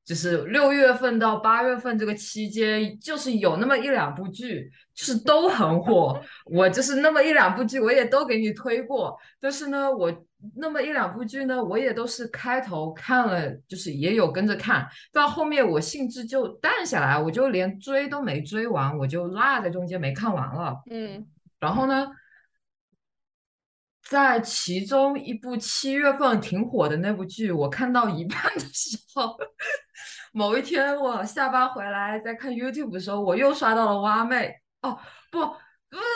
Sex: female